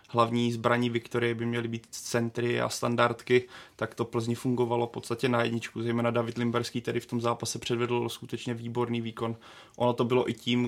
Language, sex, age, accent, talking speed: Czech, male, 20-39, native, 185 wpm